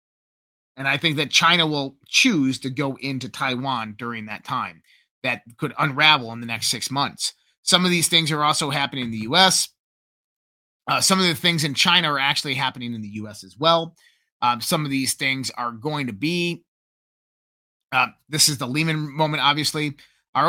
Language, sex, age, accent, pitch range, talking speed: English, male, 30-49, American, 125-155 Hz, 185 wpm